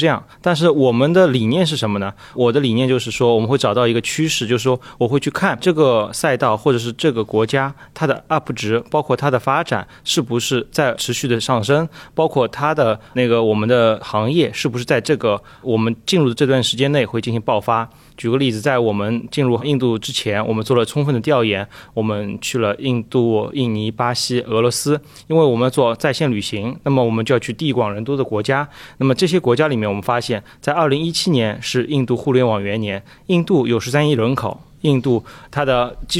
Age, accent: 30-49, native